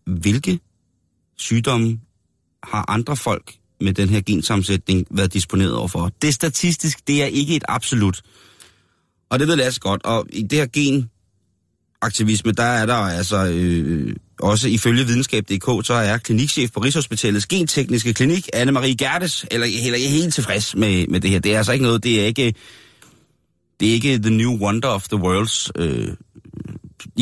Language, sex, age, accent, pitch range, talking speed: Danish, male, 30-49, native, 95-120 Hz, 170 wpm